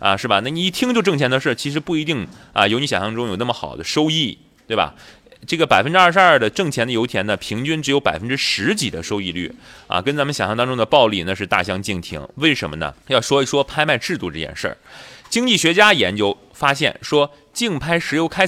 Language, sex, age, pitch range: Chinese, male, 20-39, 105-155 Hz